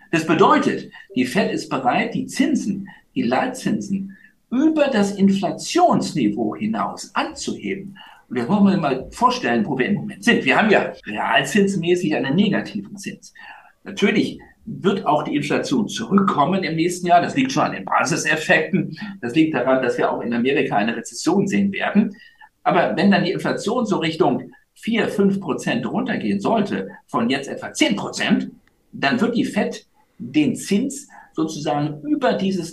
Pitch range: 180-235 Hz